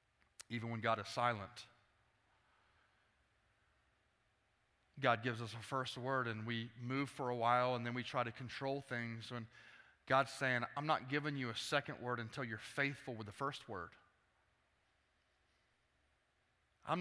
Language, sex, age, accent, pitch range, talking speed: English, male, 30-49, American, 125-190 Hz, 150 wpm